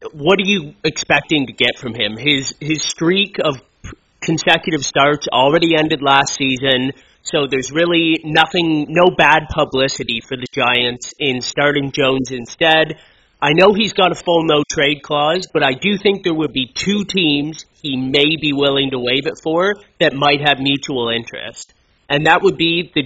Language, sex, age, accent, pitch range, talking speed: English, male, 30-49, American, 135-170 Hz, 175 wpm